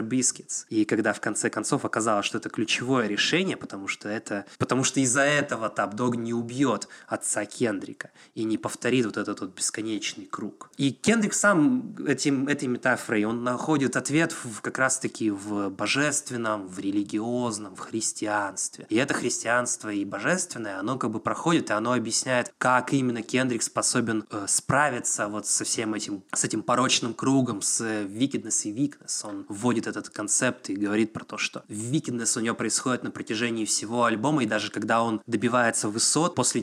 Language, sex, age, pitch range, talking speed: Russian, male, 20-39, 110-130 Hz, 170 wpm